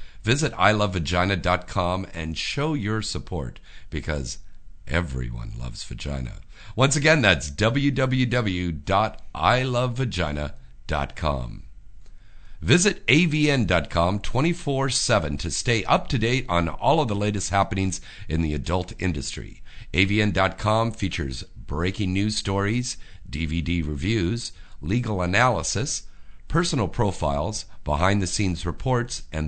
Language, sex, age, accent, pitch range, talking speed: English, male, 50-69, American, 85-115 Hz, 100 wpm